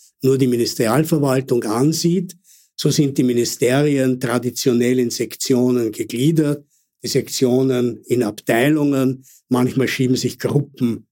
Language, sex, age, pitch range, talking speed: German, male, 60-79, 125-150 Hz, 110 wpm